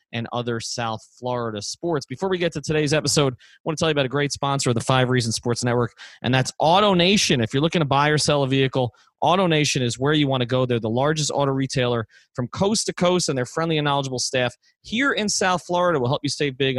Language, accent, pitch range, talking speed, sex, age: English, American, 120-155 Hz, 255 wpm, male, 30-49